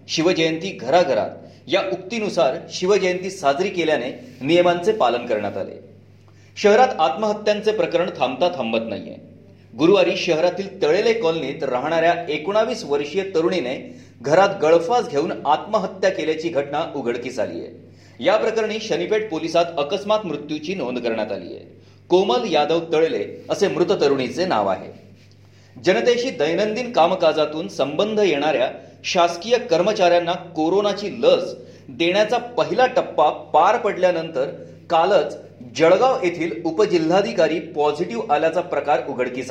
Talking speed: 100 wpm